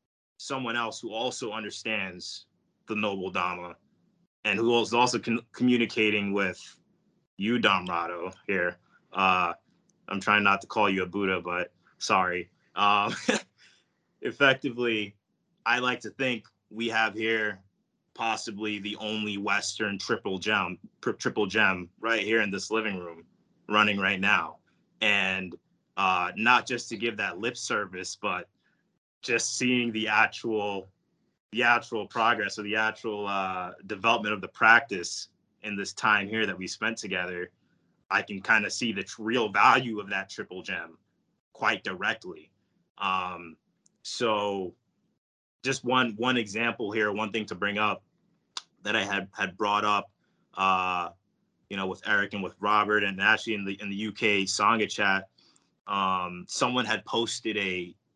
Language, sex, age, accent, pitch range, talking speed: English, male, 20-39, American, 95-110 Hz, 150 wpm